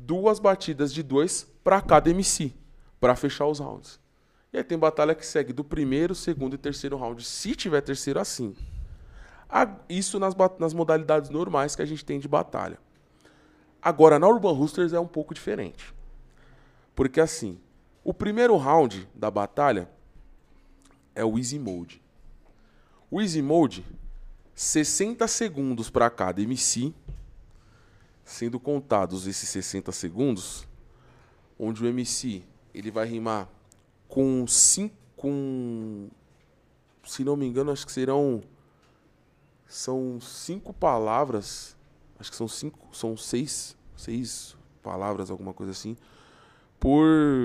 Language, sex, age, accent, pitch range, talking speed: Portuguese, male, 20-39, Brazilian, 105-150 Hz, 130 wpm